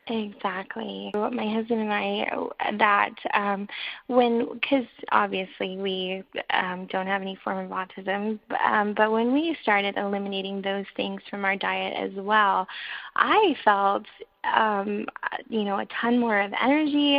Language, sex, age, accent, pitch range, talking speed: English, female, 10-29, American, 200-235 Hz, 145 wpm